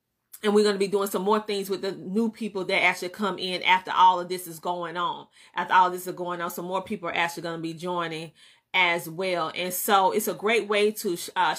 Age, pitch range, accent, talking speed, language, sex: 30-49, 180-215 Hz, American, 250 wpm, English, female